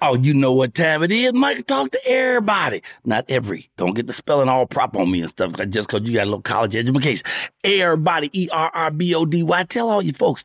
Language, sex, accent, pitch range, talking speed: English, male, American, 125-170 Hz, 210 wpm